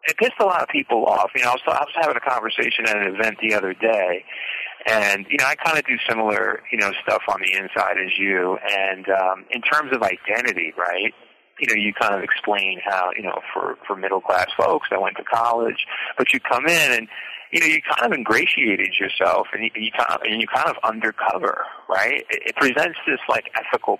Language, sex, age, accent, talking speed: English, male, 30-49, American, 210 wpm